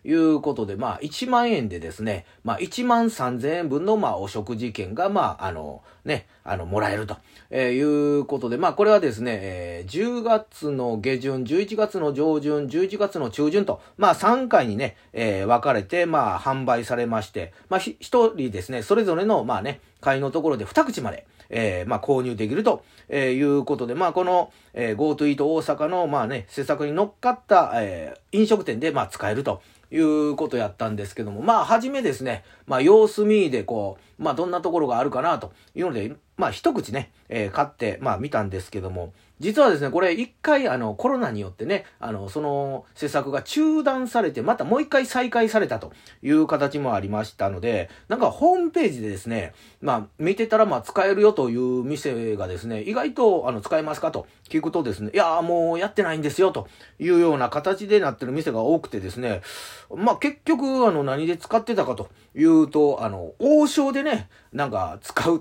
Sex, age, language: male, 40-59, Japanese